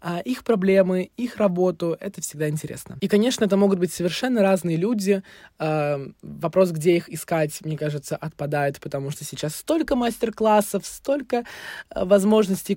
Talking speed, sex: 135 wpm, male